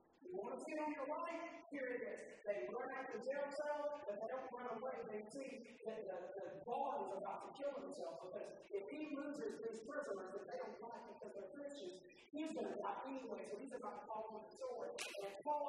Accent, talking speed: American, 220 wpm